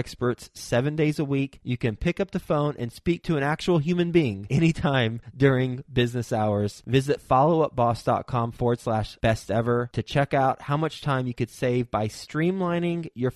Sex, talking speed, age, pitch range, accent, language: male, 180 wpm, 20-39, 120-160 Hz, American, English